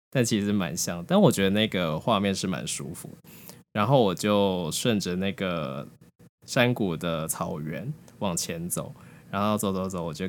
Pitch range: 95-135 Hz